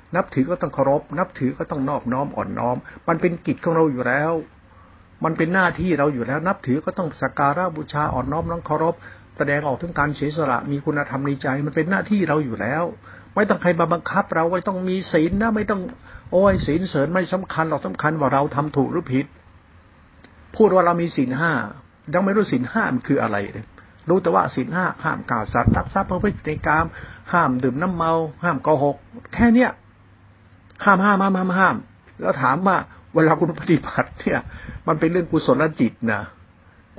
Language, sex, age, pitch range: Thai, male, 60-79, 120-170 Hz